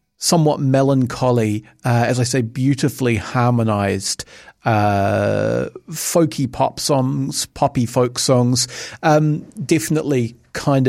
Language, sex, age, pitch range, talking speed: English, male, 40-59, 115-150 Hz, 100 wpm